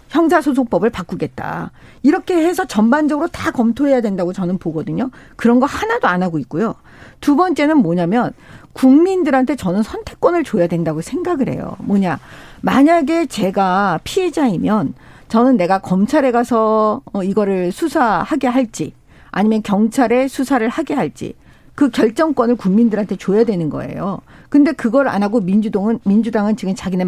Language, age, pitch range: Korean, 50-69, 195-275 Hz